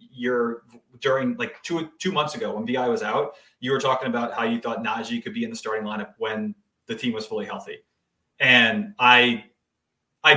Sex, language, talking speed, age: male, English, 195 wpm, 30-49